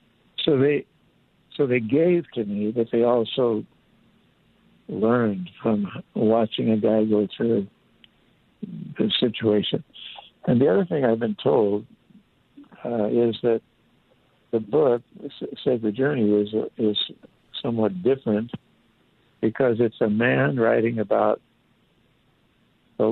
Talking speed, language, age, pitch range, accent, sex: 120 wpm, English, 60-79, 100-120 Hz, American, male